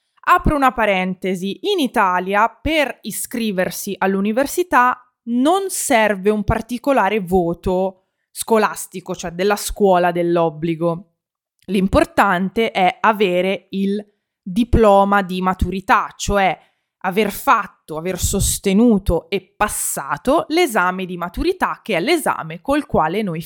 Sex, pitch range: female, 180-245 Hz